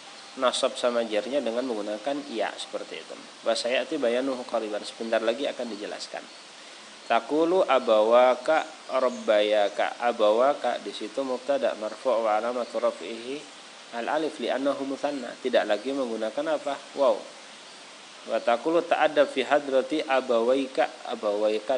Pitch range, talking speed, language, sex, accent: 115-140 Hz, 120 wpm, Indonesian, male, native